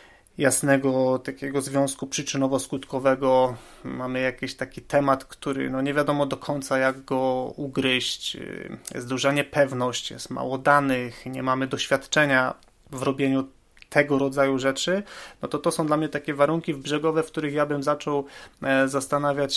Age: 30-49